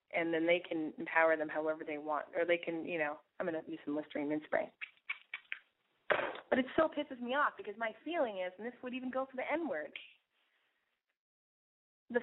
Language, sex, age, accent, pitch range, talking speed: English, female, 20-39, American, 175-255 Hz, 200 wpm